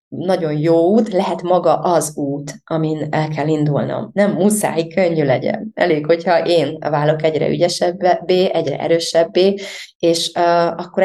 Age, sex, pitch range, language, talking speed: 20-39, female, 155-185 Hz, Hungarian, 140 wpm